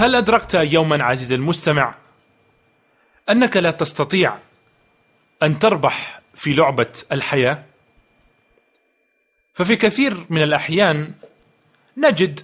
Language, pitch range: Arabic, 155-195 Hz